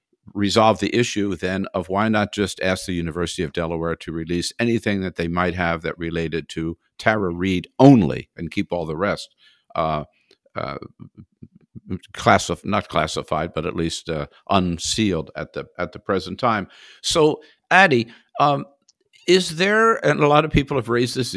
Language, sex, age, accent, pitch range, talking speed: English, male, 60-79, American, 95-115 Hz, 170 wpm